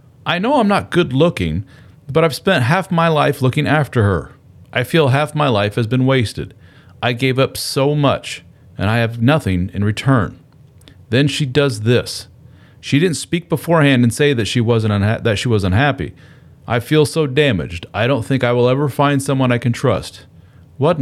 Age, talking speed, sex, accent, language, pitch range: 40-59, 195 wpm, male, American, English, 105-150 Hz